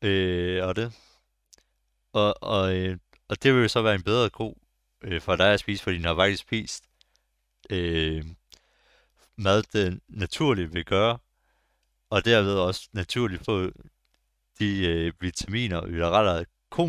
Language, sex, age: Danish, male, 60-79